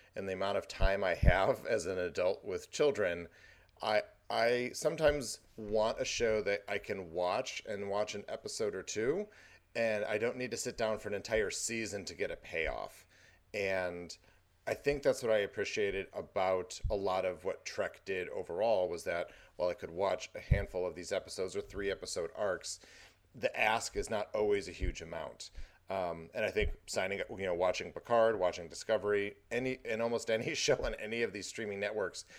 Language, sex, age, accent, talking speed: English, male, 40-59, American, 195 wpm